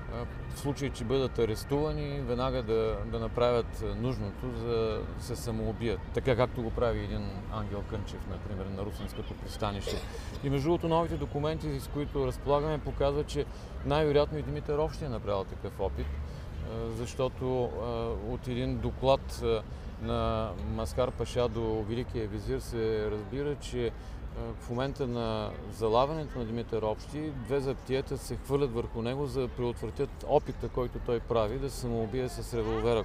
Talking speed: 145 wpm